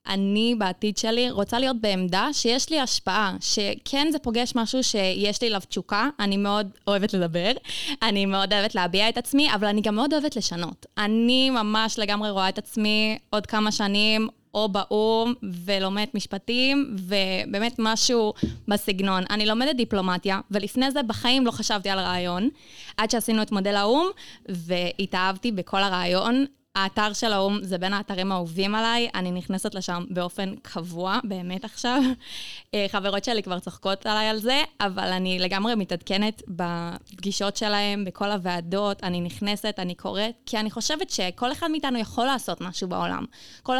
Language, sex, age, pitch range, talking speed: Hebrew, female, 20-39, 195-230 Hz, 155 wpm